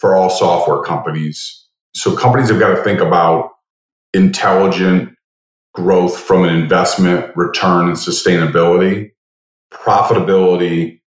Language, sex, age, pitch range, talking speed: English, male, 30-49, 85-100 Hz, 115 wpm